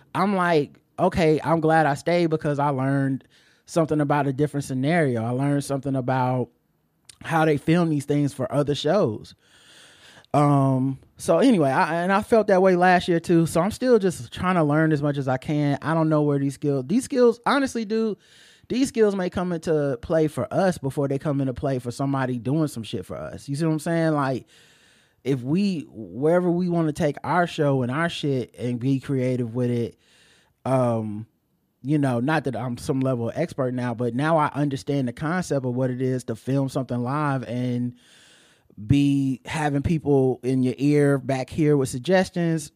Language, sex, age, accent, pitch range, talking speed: English, male, 20-39, American, 130-160 Hz, 195 wpm